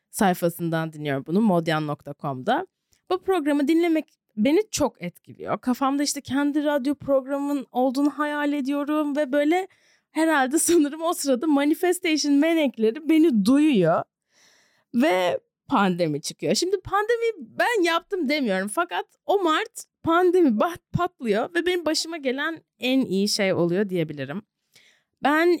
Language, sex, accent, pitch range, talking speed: Turkish, female, native, 220-340 Hz, 120 wpm